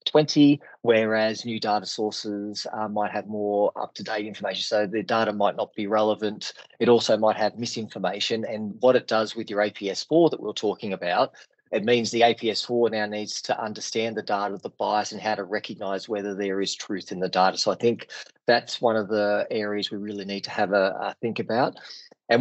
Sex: male